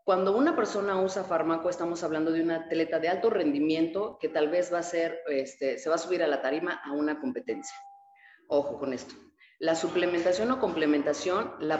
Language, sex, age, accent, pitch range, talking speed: Spanish, female, 30-49, Mexican, 150-185 Hz, 195 wpm